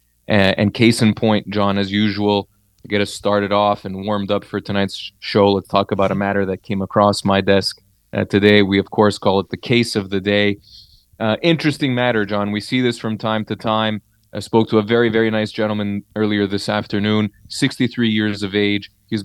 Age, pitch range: 20-39, 100-125 Hz